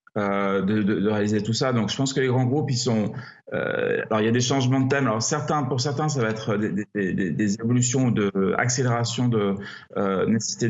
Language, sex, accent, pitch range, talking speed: French, male, French, 110-135 Hz, 235 wpm